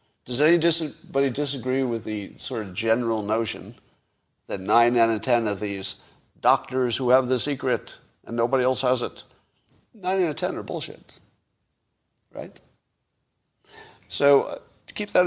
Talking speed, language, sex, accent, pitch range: 145 wpm, English, male, American, 115-150 Hz